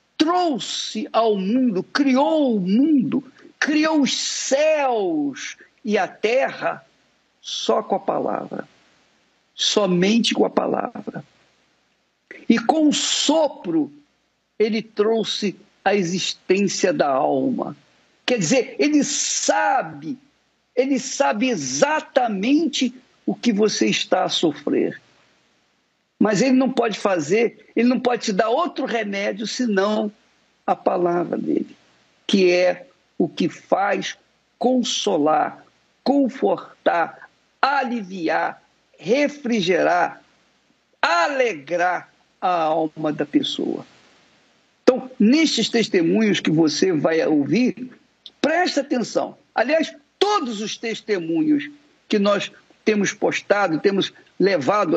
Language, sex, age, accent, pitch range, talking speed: Portuguese, male, 50-69, Brazilian, 210-290 Hz, 100 wpm